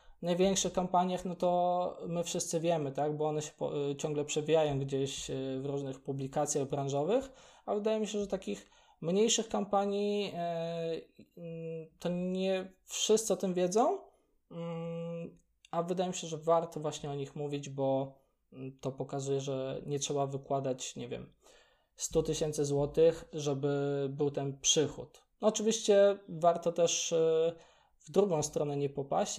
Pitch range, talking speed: 145-180 Hz, 150 wpm